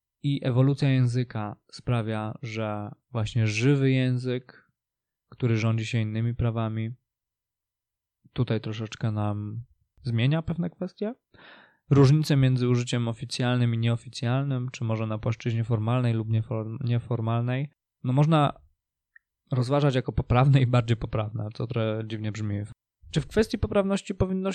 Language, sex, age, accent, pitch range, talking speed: Polish, male, 20-39, native, 110-140 Hz, 120 wpm